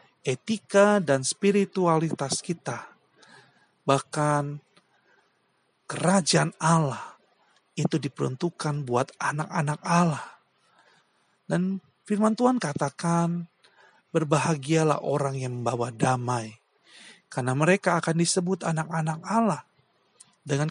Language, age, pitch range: Indonesian, 40-59, 130-175 Hz